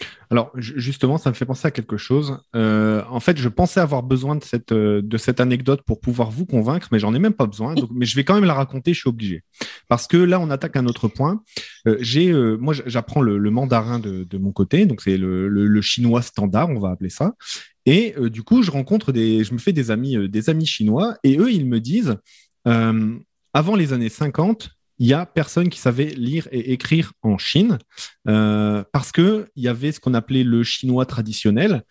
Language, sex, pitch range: French, male, 120-175 Hz